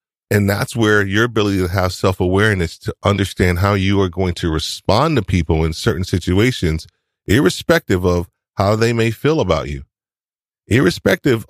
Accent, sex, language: American, male, English